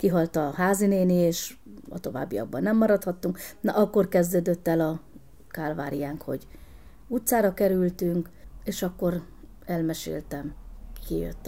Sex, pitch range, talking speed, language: female, 170-195 Hz, 110 wpm, Hungarian